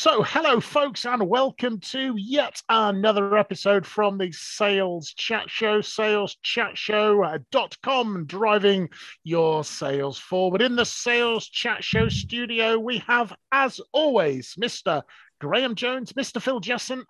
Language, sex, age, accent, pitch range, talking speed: English, male, 40-59, British, 180-240 Hz, 125 wpm